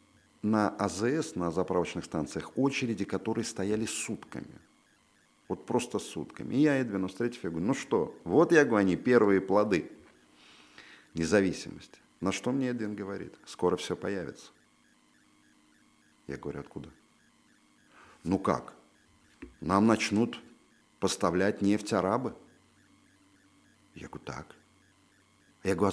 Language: Russian